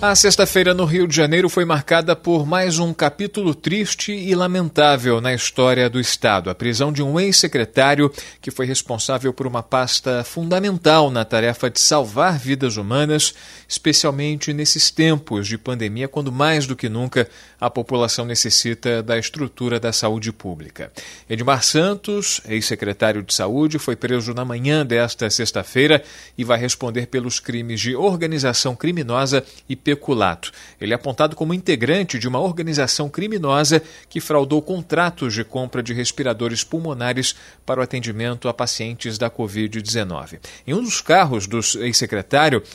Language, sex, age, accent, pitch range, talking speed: Portuguese, male, 40-59, Brazilian, 120-155 Hz, 145 wpm